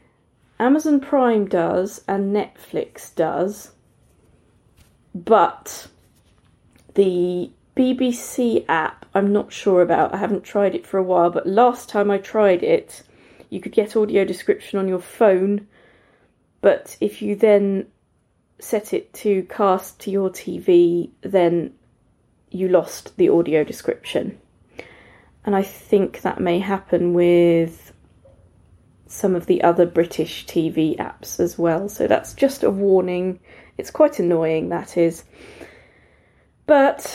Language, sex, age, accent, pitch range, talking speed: English, female, 30-49, British, 170-210 Hz, 130 wpm